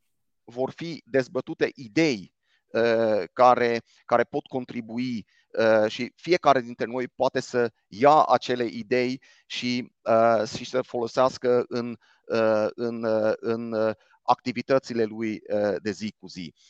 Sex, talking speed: male, 130 wpm